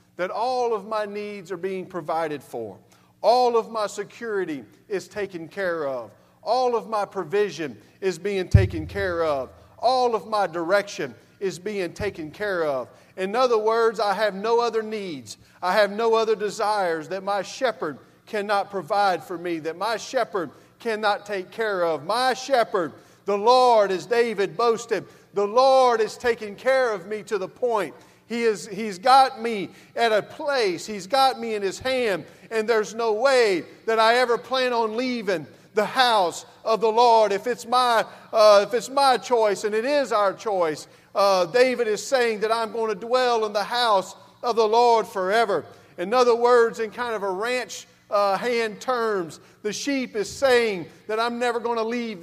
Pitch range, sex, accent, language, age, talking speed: 200-245 Hz, male, American, English, 40-59, 175 wpm